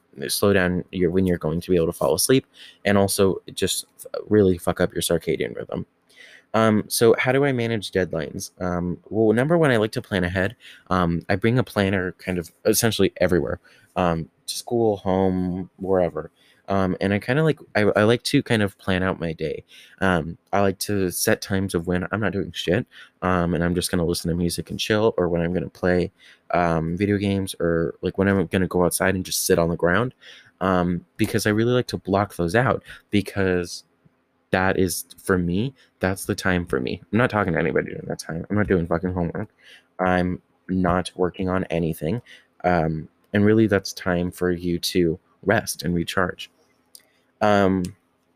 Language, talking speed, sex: English, 200 wpm, male